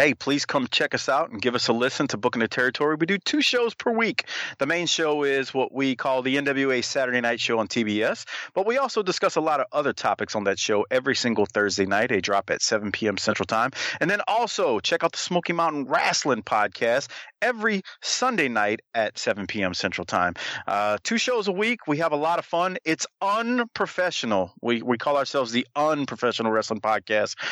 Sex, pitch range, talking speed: male, 110-155 Hz, 210 wpm